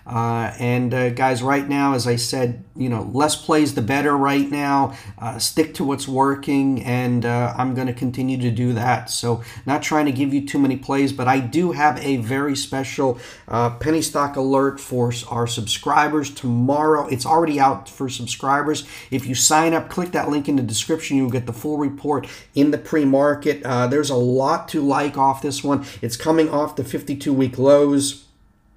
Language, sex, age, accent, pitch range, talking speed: English, male, 40-59, American, 125-150 Hz, 195 wpm